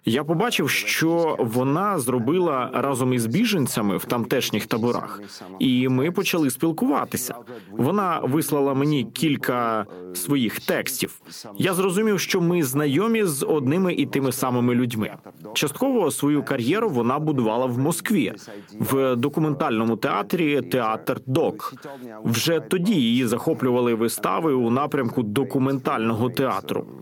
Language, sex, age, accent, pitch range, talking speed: Ukrainian, male, 30-49, native, 115-150 Hz, 120 wpm